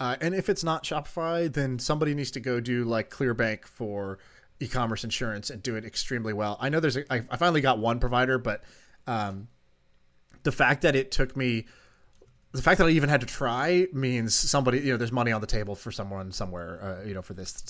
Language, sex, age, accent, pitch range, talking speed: English, male, 30-49, American, 115-155 Hz, 215 wpm